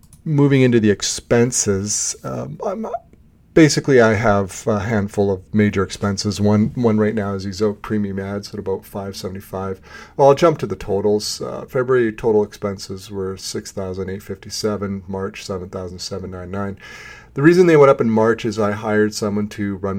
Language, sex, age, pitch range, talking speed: English, male, 40-59, 95-110 Hz, 175 wpm